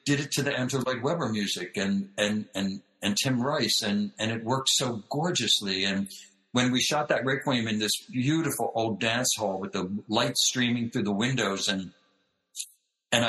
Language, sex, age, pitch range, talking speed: English, male, 60-79, 100-125 Hz, 185 wpm